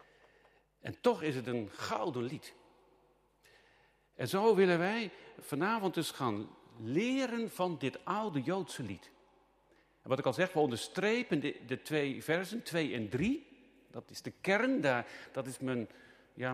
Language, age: Dutch, 50-69